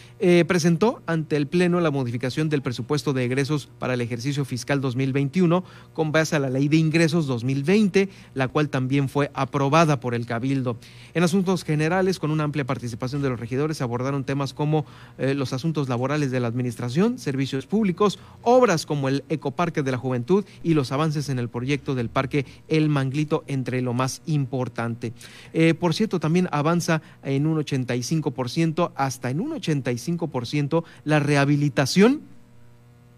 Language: Spanish